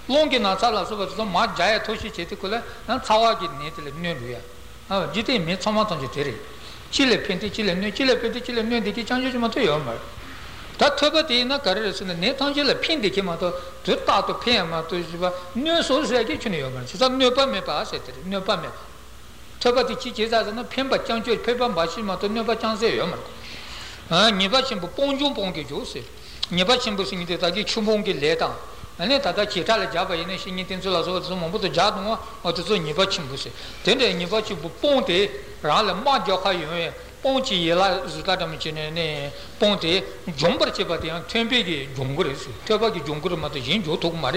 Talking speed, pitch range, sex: 55 wpm, 175-230 Hz, male